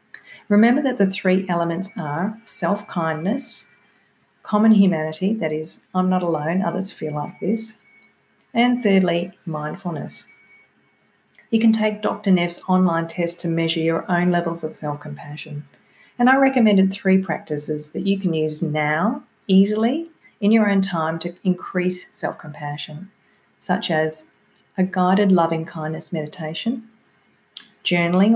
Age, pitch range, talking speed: 40-59, 170-215 Hz, 125 wpm